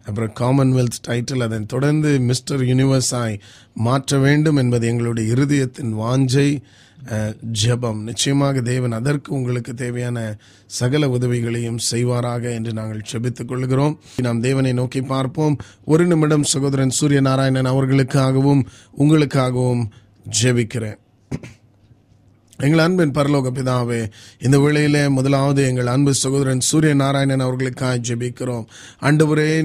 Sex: male